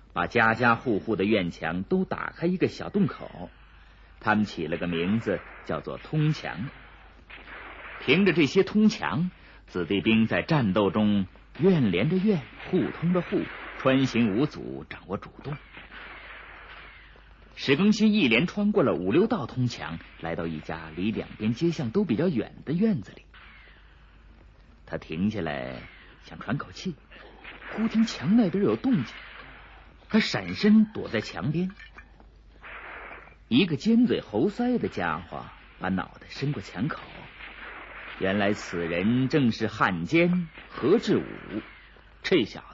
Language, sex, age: Chinese, male, 50-69